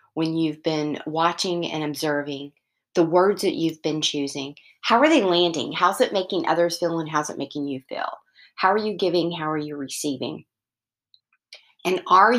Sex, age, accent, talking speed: female, 40-59, American, 180 wpm